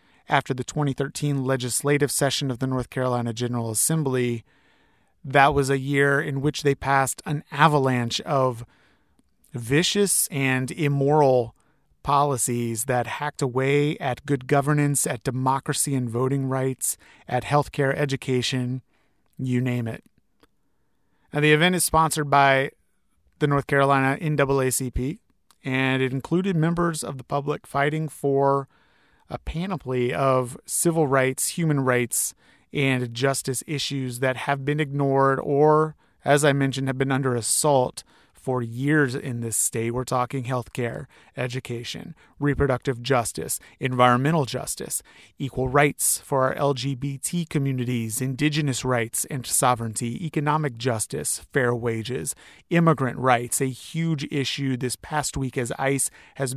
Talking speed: 130 wpm